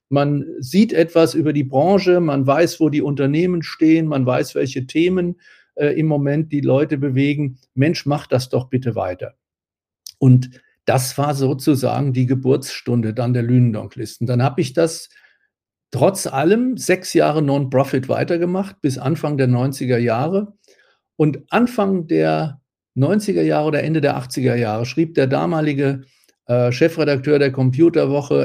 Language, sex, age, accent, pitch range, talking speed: German, male, 50-69, German, 130-155 Hz, 145 wpm